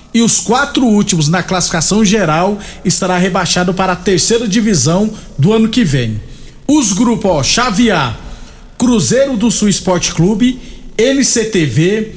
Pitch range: 175-225 Hz